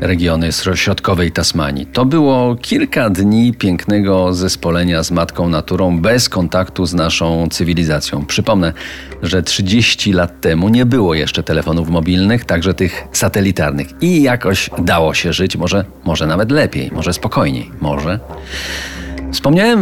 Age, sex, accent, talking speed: 40-59, male, native, 130 wpm